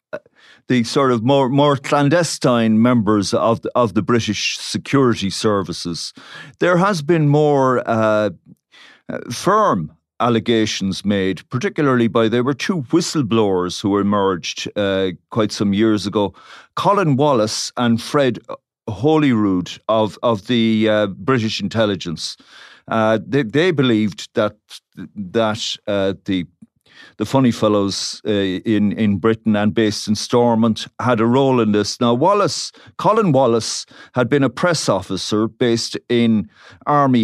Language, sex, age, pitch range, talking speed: English, male, 50-69, 105-135 Hz, 130 wpm